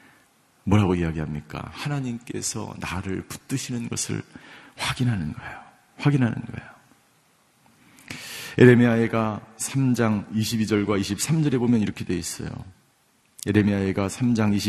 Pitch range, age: 105-130 Hz, 40-59